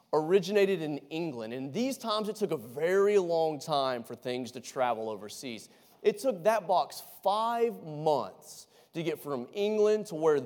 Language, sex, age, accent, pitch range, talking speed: English, male, 30-49, American, 135-215 Hz, 165 wpm